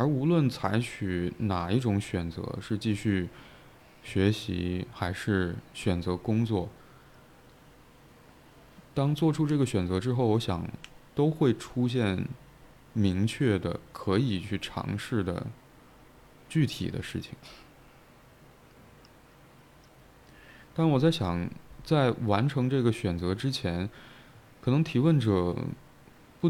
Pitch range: 95-130 Hz